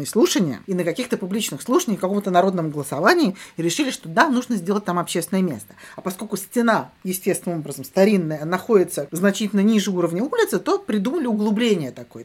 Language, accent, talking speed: Russian, native, 165 wpm